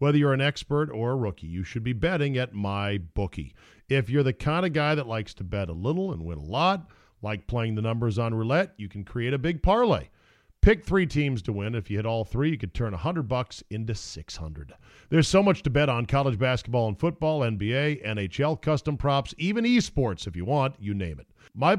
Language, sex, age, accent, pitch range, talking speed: English, male, 50-69, American, 110-165 Hz, 225 wpm